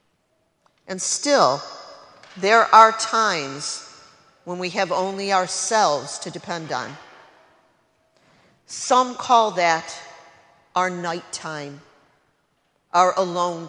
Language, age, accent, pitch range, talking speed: English, 50-69, American, 175-215 Hz, 90 wpm